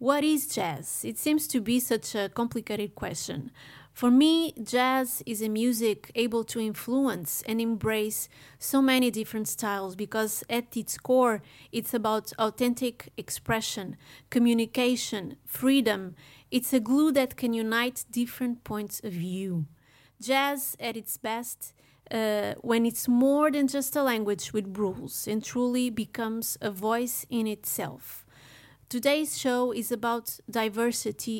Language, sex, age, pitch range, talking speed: English, female, 30-49, 215-250 Hz, 140 wpm